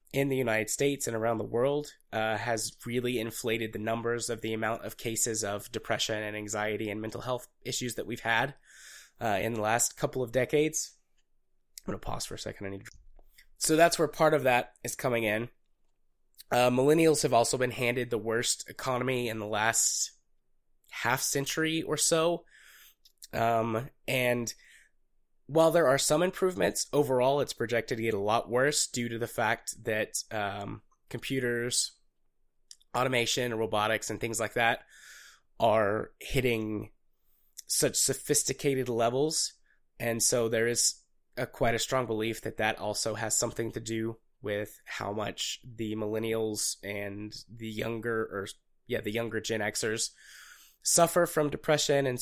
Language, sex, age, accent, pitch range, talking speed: English, male, 20-39, American, 110-140 Hz, 160 wpm